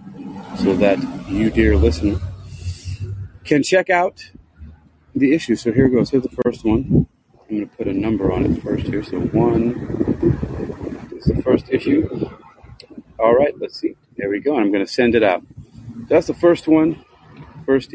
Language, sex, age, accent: English, male, 30-49, American